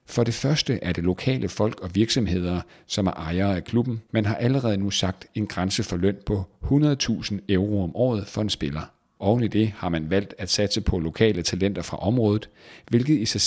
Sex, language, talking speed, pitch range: male, Danish, 210 wpm, 90-115 Hz